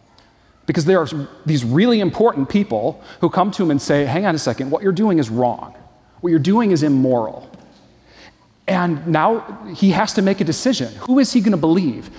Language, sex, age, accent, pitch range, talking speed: English, male, 40-59, American, 125-175 Hz, 195 wpm